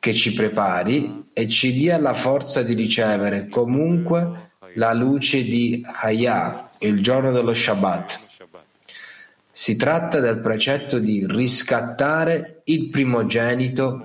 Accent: native